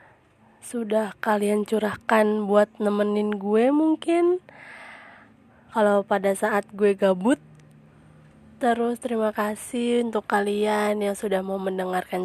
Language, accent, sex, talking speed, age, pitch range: Indonesian, native, female, 105 wpm, 20-39, 200-230 Hz